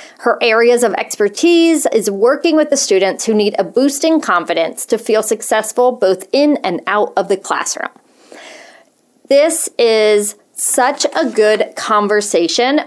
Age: 30-49